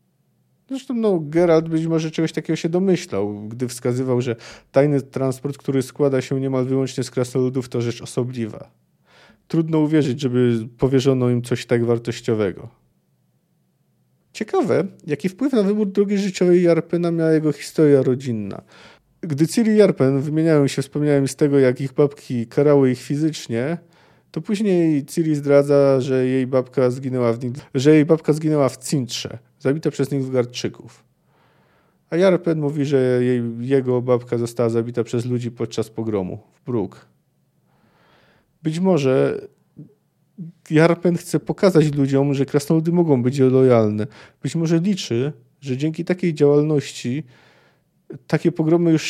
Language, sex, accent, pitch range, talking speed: Polish, male, native, 125-160 Hz, 140 wpm